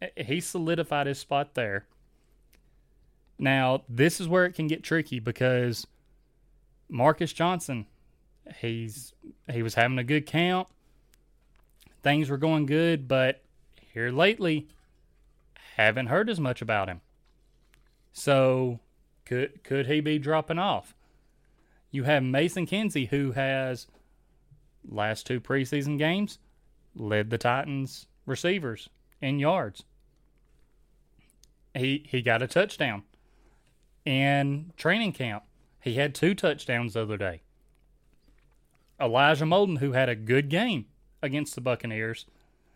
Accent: American